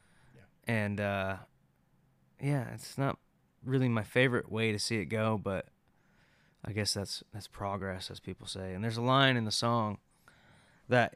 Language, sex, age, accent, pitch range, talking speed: English, male, 20-39, American, 100-115 Hz, 160 wpm